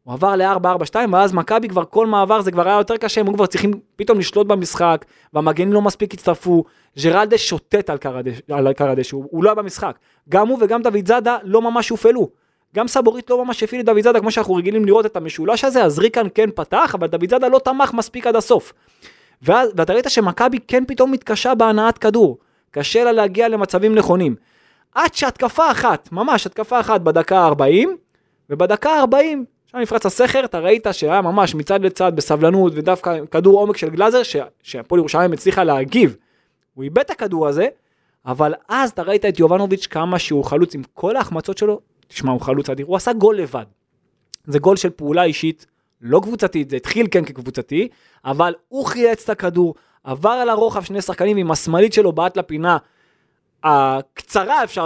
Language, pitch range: Hebrew, 165-230 Hz